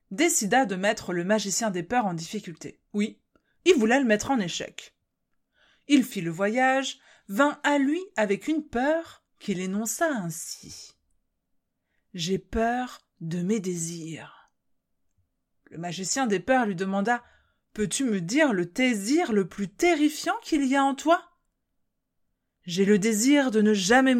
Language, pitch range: French, 185-265 Hz